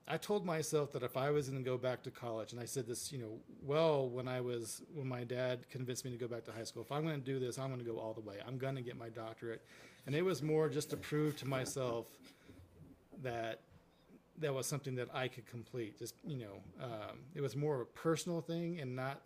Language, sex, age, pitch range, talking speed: English, male, 40-59, 120-145 Hz, 260 wpm